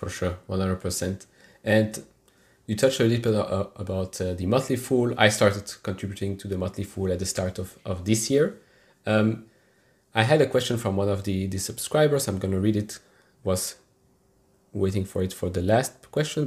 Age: 30-49